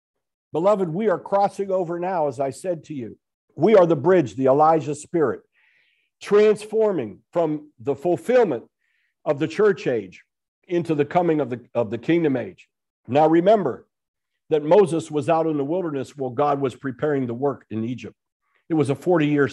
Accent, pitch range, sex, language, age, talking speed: American, 130-175 Hz, male, English, 50-69, 170 wpm